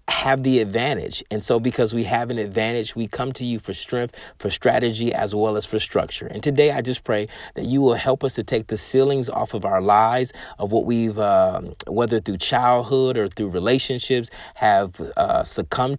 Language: English